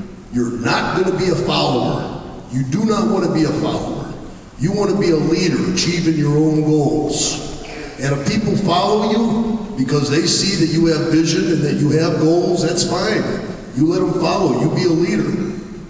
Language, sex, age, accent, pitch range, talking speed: English, male, 50-69, American, 155-190 Hz, 185 wpm